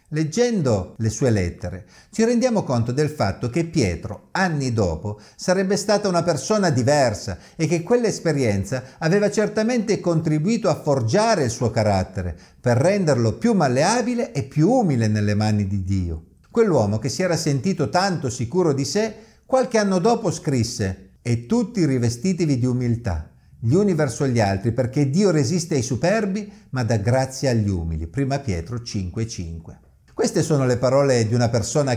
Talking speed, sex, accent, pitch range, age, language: 155 wpm, male, native, 105-175 Hz, 50-69, Italian